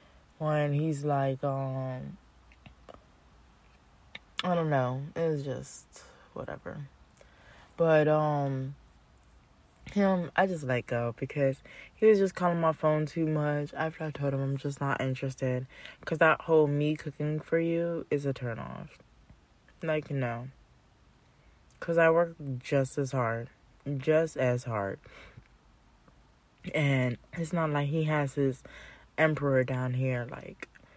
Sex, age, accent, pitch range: female, 20-39, American, 125-155 Hz